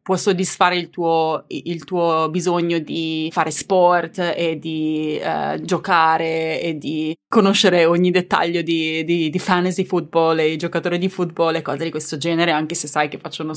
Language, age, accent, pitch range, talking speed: Italian, 20-39, native, 155-180 Hz, 170 wpm